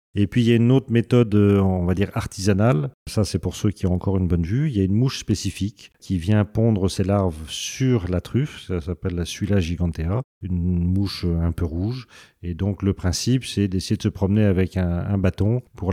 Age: 40-59